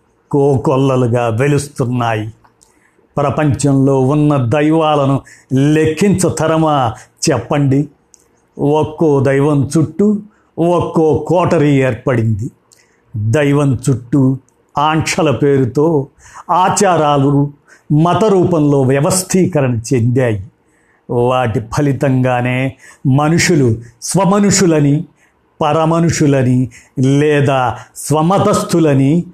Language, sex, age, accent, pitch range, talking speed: Telugu, male, 50-69, native, 130-160 Hz, 55 wpm